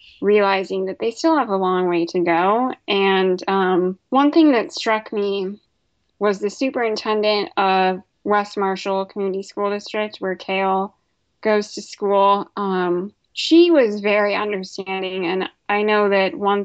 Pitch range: 190-215 Hz